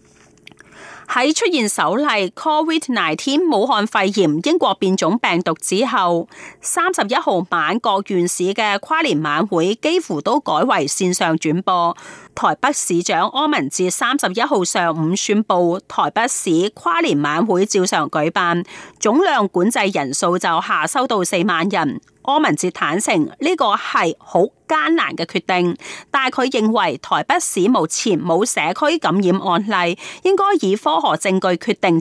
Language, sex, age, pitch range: Chinese, female, 30-49, 175-275 Hz